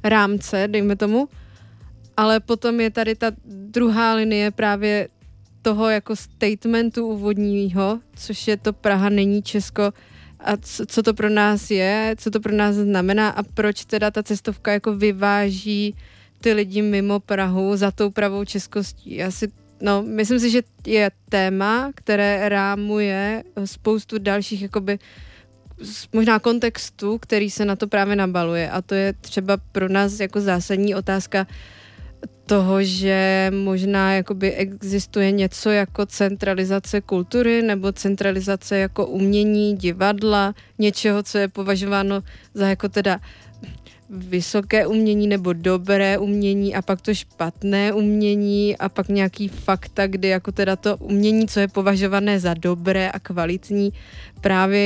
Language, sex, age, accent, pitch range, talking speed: Czech, female, 20-39, native, 190-210 Hz, 135 wpm